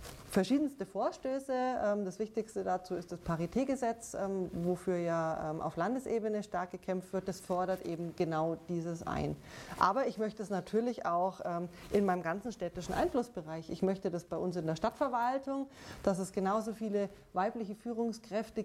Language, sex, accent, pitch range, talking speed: German, female, German, 180-220 Hz, 150 wpm